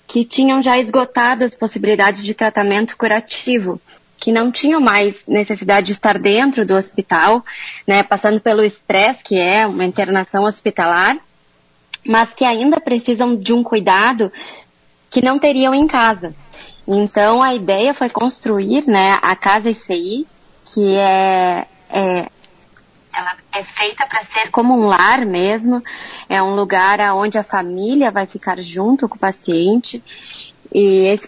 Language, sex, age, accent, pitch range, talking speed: Portuguese, female, 20-39, Brazilian, 190-230 Hz, 145 wpm